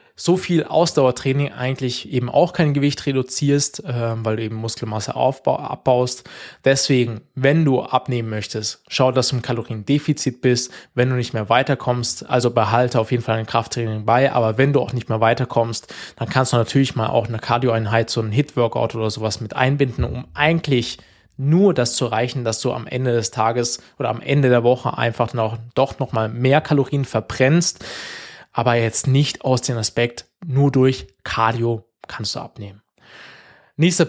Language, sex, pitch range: German, male, 115-135 Hz